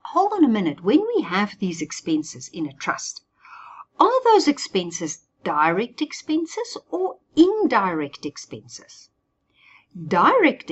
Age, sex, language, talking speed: 50-69, female, English, 120 wpm